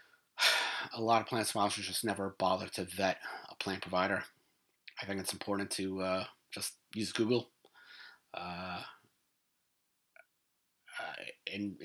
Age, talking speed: 30-49, 115 wpm